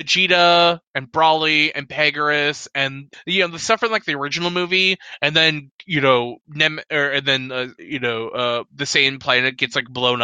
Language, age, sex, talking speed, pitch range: English, 20-39, male, 195 wpm, 135-180 Hz